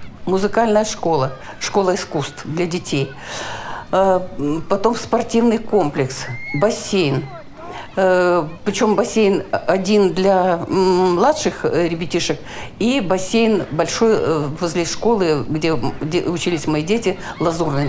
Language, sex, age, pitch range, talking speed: Ukrainian, female, 50-69, 170-265 Hz, 85 wpm